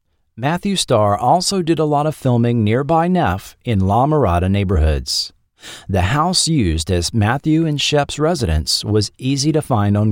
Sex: male